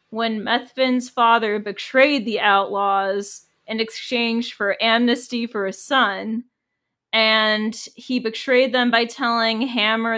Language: English